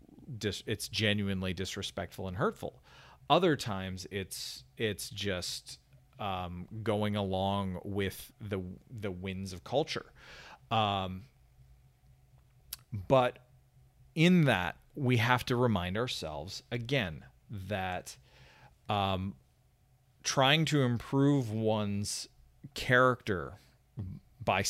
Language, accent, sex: English, American, male